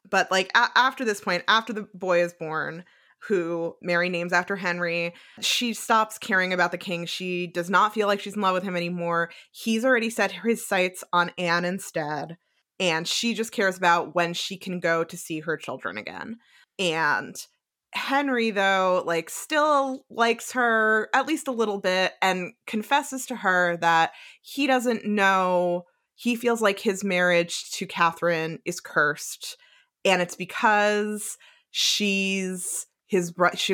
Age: 20-39